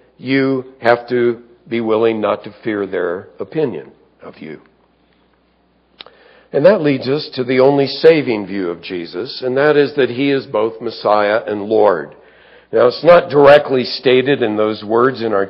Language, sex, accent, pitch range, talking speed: English, male, American, 125-155 Hz, 165 wpm